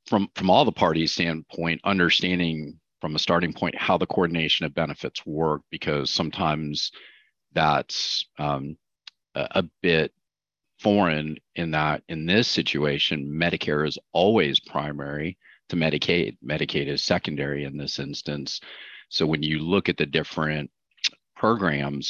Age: 40-59